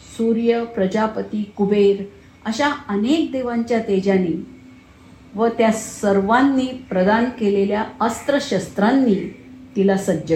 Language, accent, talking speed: Marathi, native, 85 wpm